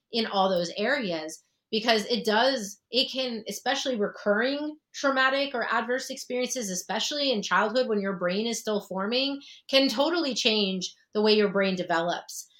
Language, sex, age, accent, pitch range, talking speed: English, female, 30-49, American, 180-220 Hz, 150 wpm